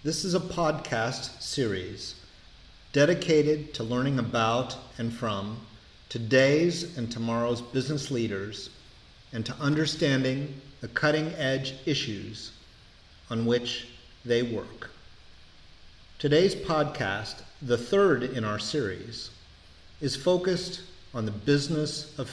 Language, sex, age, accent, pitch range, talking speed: English, male, 40-59, American, 105-145 Hz, 105 wpm